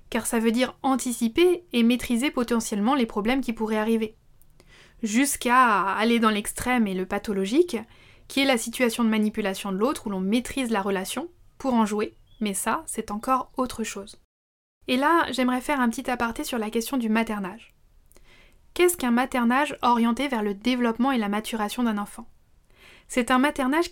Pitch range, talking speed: 220-275 Hz, 175 wpm